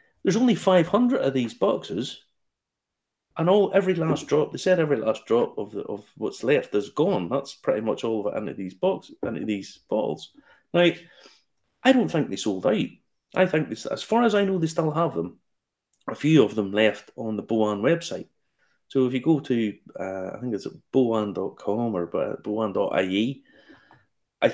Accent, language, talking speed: British, English, 180 wpm